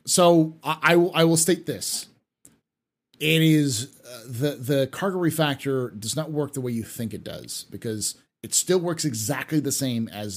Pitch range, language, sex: 100-145 Hz, English, male